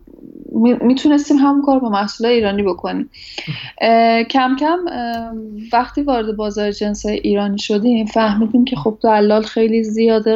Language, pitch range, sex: Persian, 210-245 Hz, female